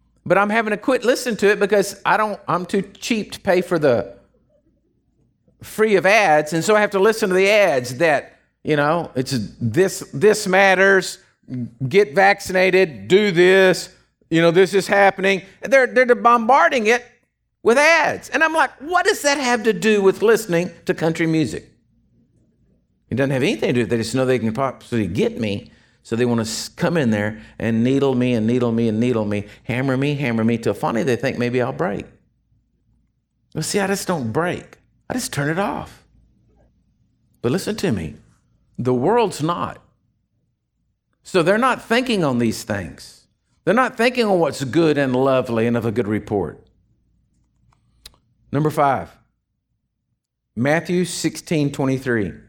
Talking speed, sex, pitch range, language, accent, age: 175 wpm, male, 120-200 Hz, English, American, 50-69